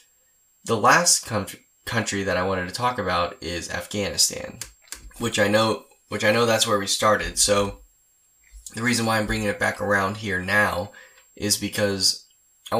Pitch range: 95-115 Hz